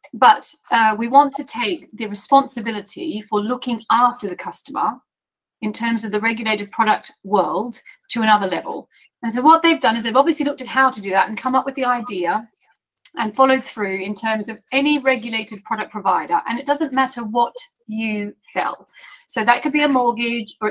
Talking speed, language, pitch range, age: 195 wpm, English, 225-285 Hz, 30-49